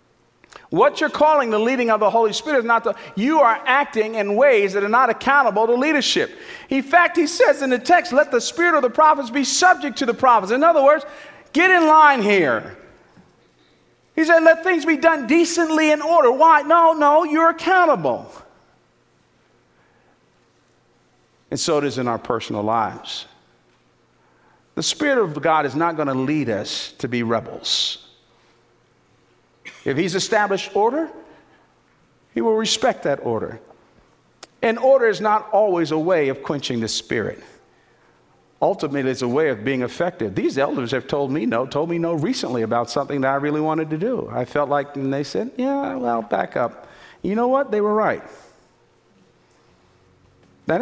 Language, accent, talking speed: English, American, 170 wpm